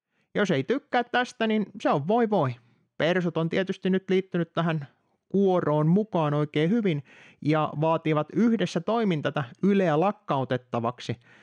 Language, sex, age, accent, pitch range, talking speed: Finnish, male, 30-49, native, 135-195 Hz, 130 wpm